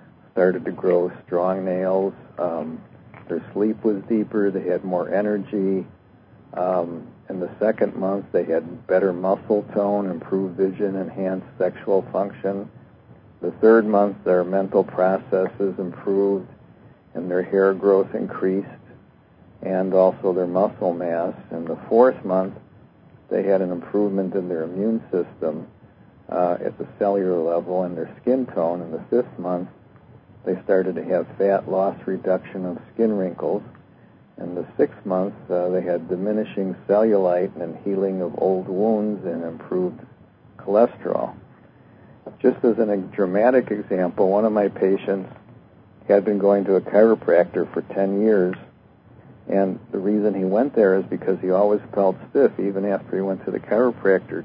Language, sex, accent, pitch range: English, male, American, 95-100 Hz